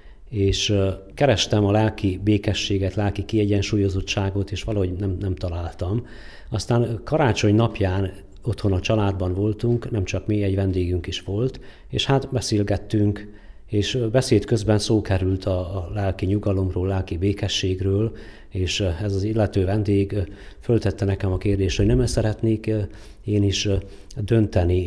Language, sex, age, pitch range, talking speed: Hungarian, male, 50-69, 90-105 Hz, 130 wpm